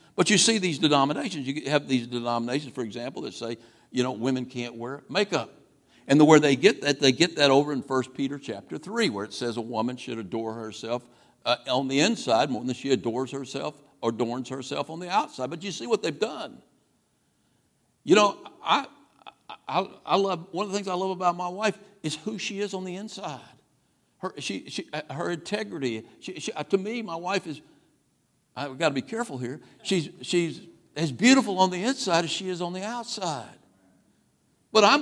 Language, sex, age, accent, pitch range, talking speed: English, male, 60-79, American, 140-225 Hz, 200 wpm